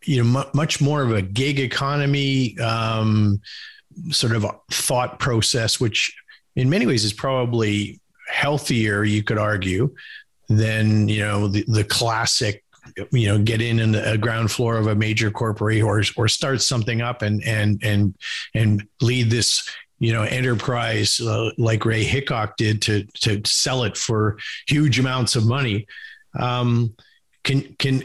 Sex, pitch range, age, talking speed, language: male, 110-130 Hz, 50-69, 155 wpm, English